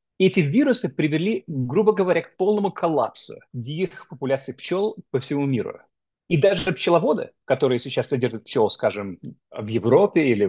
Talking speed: 150 wpm